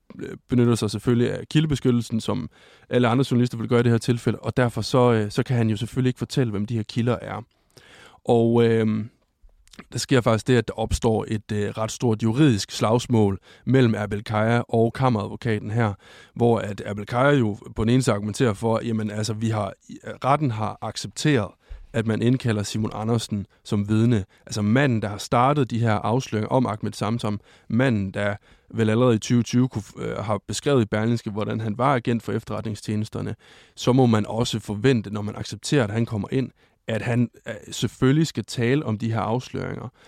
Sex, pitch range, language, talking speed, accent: male, 110-125 Hz, Danish, 180 wpm, native